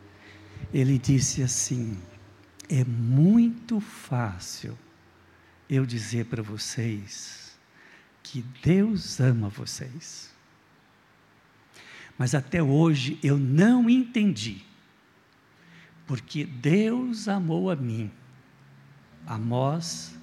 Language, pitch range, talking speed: Portuguese, 120-170 Hz, 75 wpm